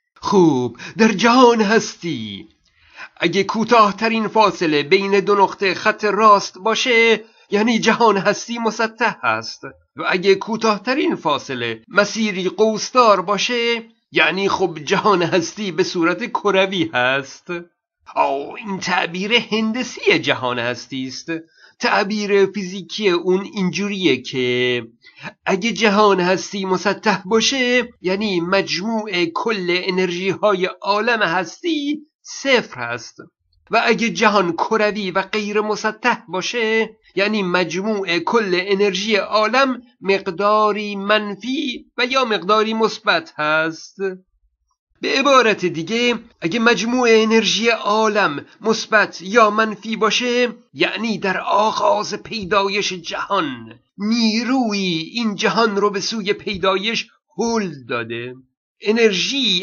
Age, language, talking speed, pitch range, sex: 50-69, Persian, 105 wpm, 185-225 Hz, male